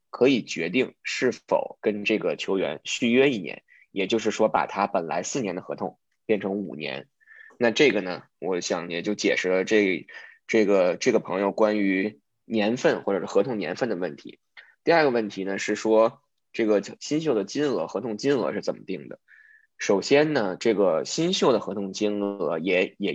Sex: male